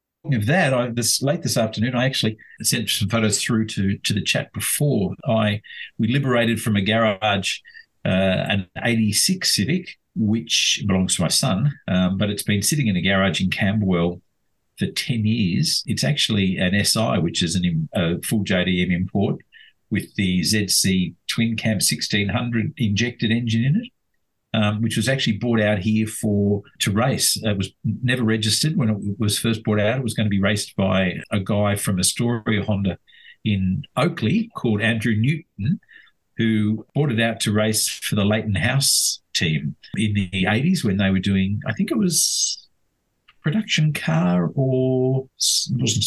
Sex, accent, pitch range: male, Australian, 100-125 Hz